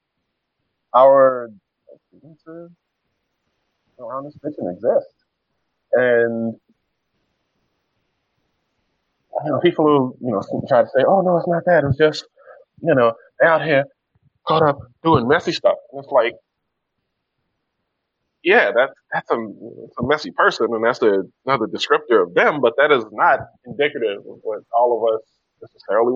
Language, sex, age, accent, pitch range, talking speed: English, male, 20-39, American, 115-175 Hz, 140 wpm